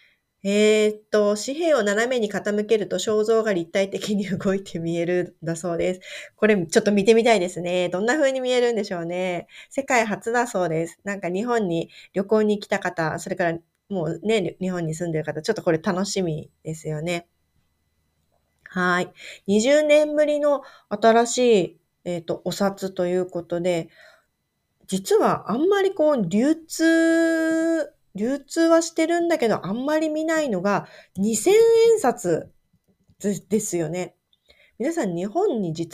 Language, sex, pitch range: Japanese, female, 175-260 Hz